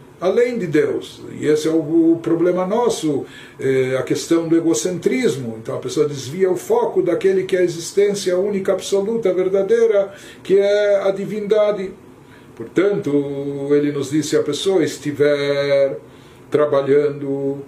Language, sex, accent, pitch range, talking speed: Portuguese, male, Brazilian, 145-190 Hz, 130 wpm